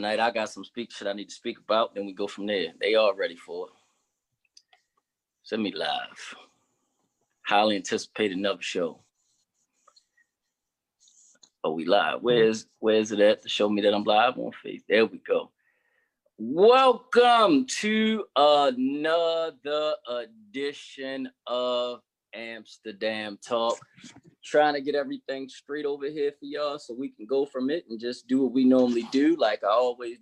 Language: English